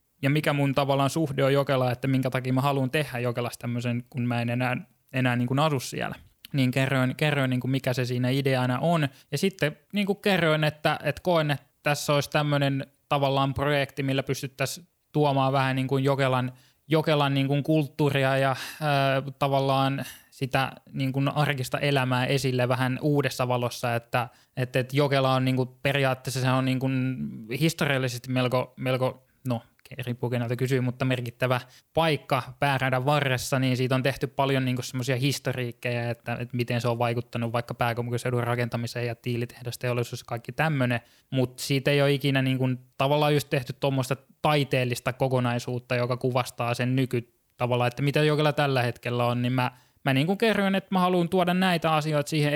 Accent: native